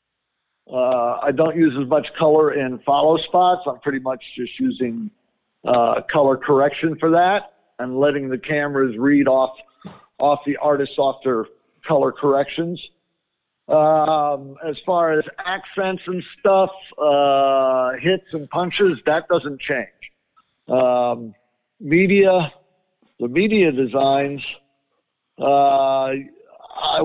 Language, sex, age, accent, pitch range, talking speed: English, male, 50-69, American, 135-170 Hz, 120 wpm